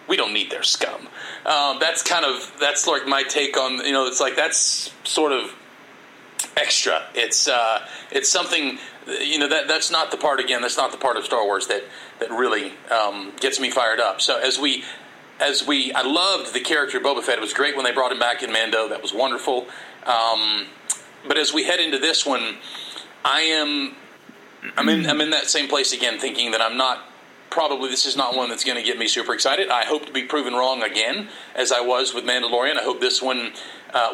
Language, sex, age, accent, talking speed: English, male, 30-49, American, 220 wpm